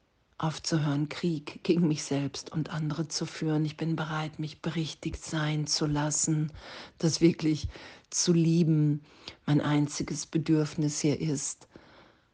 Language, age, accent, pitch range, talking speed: German, 40-59, German, 145-165 Hz, 125 wpm